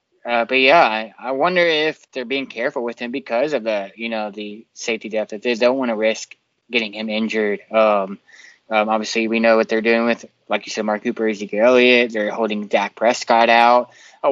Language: English